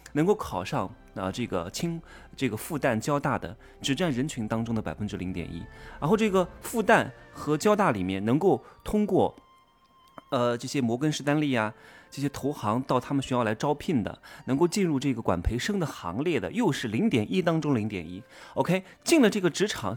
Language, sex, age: Chinese, male, 30-49